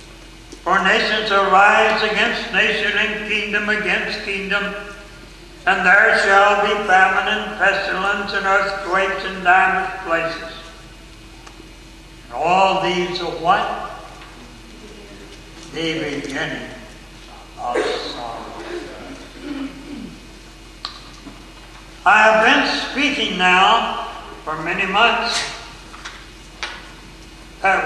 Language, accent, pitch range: English, American, 185-225 Hz